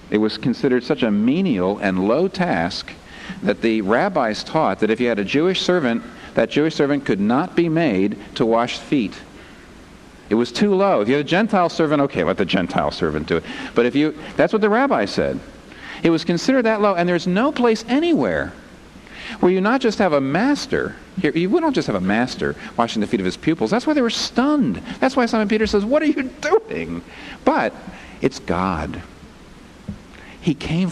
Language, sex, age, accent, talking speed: English, male, 50-69, American, 200 wpm